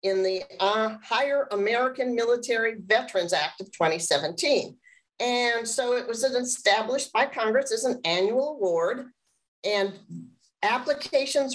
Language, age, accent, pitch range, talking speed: English, 50-69, American, 190-255 Hz, 120 wpm